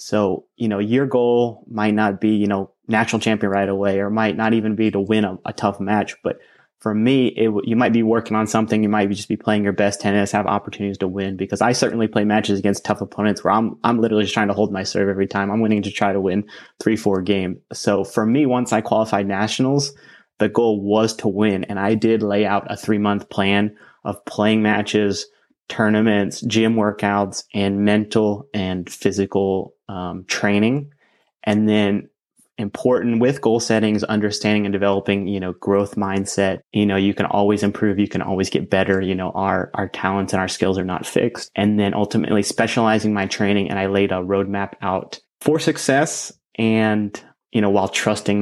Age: 30-49